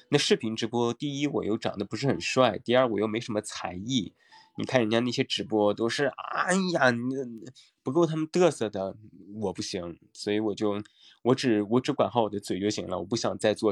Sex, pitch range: male, 105-145 Hz